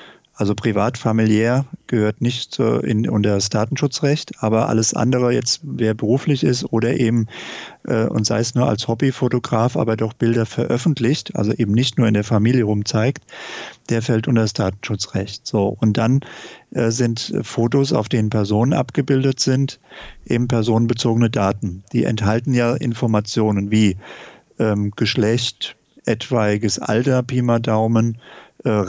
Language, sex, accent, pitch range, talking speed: German, male, German, 110-130 Hz, 145 wpm